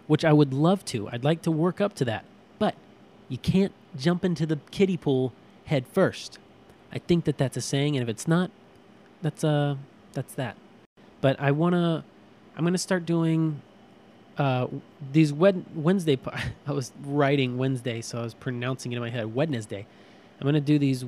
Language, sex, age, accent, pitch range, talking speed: English, male, 20-39, American, 125-160 Hz, 195 wpm